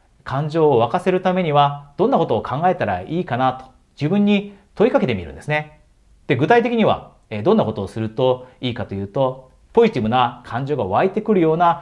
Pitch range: 115-160 Hz